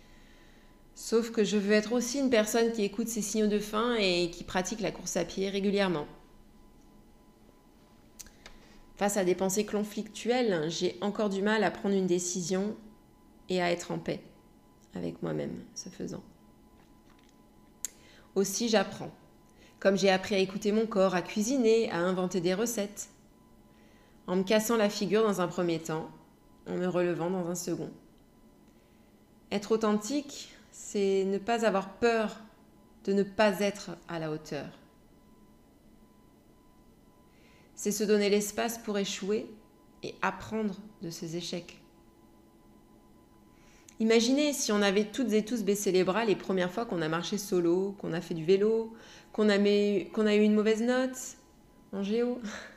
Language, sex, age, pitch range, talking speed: French, female, 20-39, 185-220 Hz, 150 wpm